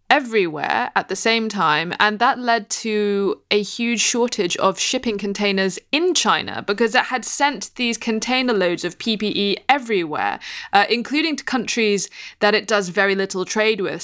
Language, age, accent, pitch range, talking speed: English, 20-39, British, 185-230 Hz, 160 wpm